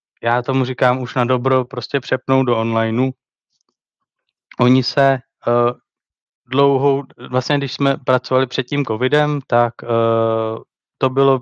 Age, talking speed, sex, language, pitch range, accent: 20-39, 130 wpm, male, Czech, 120-130 Hz, native